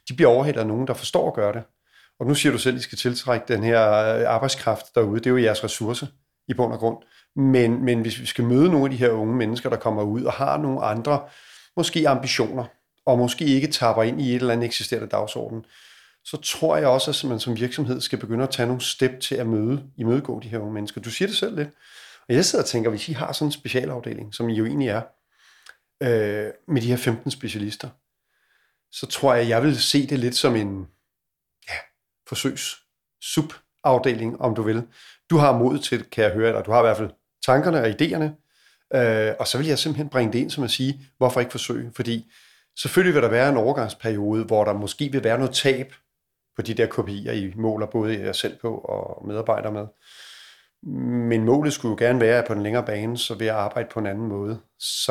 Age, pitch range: 40-59, 110-135 Hz